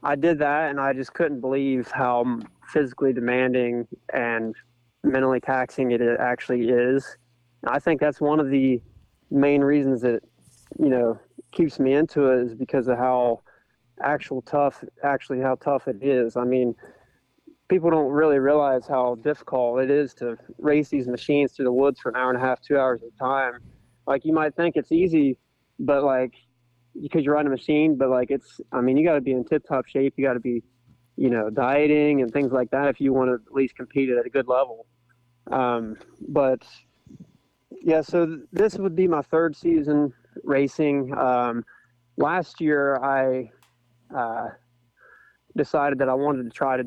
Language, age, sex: English, 20-39, male